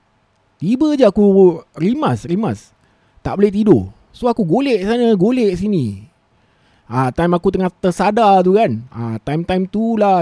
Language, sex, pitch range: Malay, male, 125-200 Hz